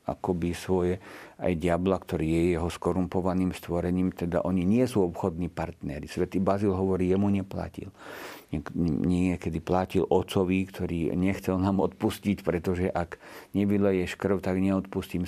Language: Slovak